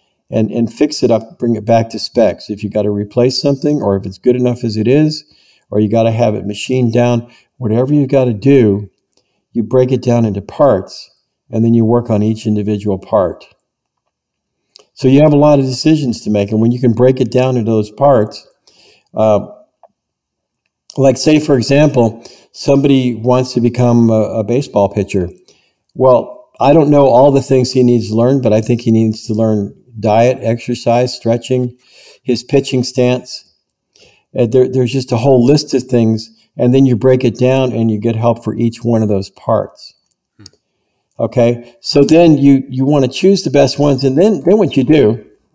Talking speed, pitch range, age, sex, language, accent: 195 wpm, 110-135 Hz, 50-69, male, English, American